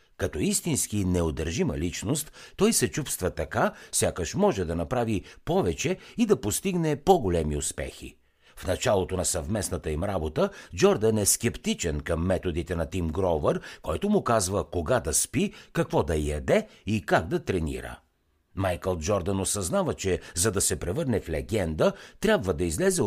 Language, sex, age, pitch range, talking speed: Bulgarian, male, 60-79, 80-125 Hz, 150 wpm